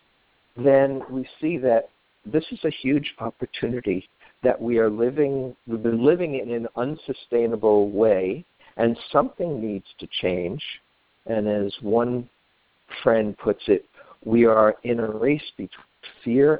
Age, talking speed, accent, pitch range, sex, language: 50-69, 135 wpm, American, 105-130 Hz, male, English